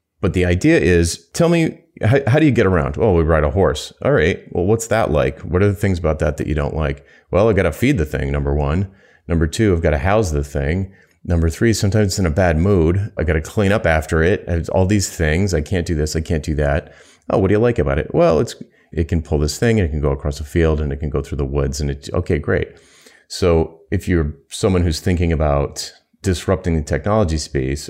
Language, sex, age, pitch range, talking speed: English, male, 30-49, 75-95 Hz, 260 wpm